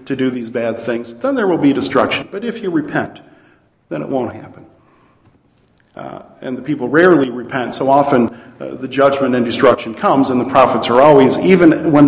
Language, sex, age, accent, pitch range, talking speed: English, male, 50-69, American, 115-145 Hz, 195 wpm